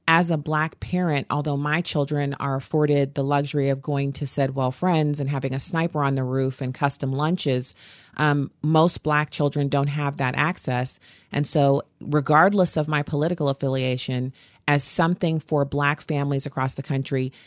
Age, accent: 30-49, American